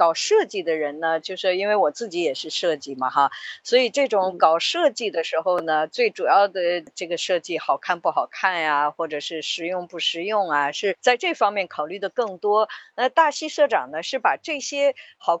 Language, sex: Chinese, female